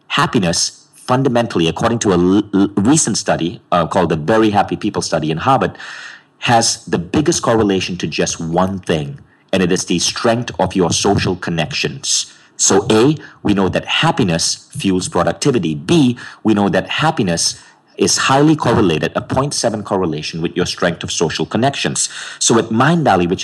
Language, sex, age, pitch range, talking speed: English, male, 40-59, 95-125 Hz, 165 wpm